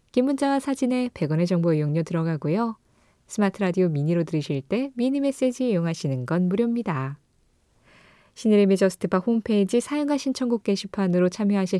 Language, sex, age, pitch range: Korean, female, 20-39, 160-230 Hz